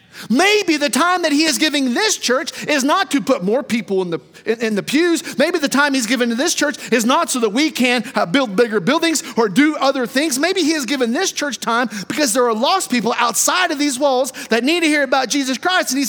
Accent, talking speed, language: American, 245 wpm, English